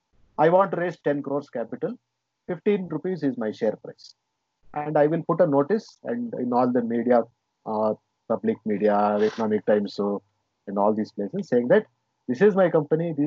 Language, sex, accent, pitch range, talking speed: Kannada, male, native, 130-195 Hz, 185 wpm